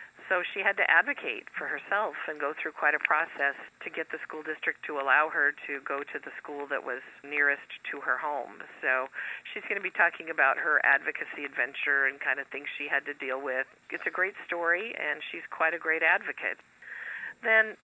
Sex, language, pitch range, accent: female, English, 145-170 Hz, American